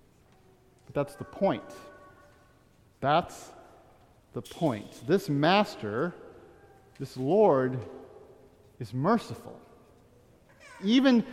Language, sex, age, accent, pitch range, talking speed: English, male, 50-69, American, 130-190 Hz, 70 wpm